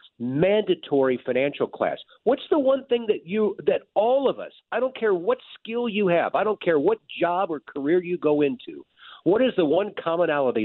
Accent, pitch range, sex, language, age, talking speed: American, 140-210 Hz, male, English, 50-69, 195 wpm